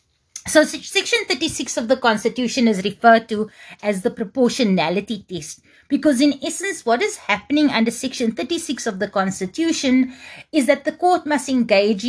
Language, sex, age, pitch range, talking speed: English, female, 30-49, 200-270 Hz, 155 wpm